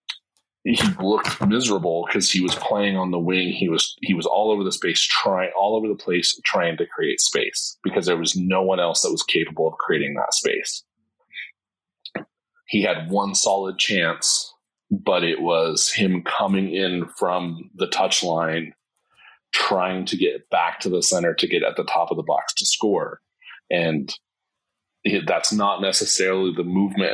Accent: American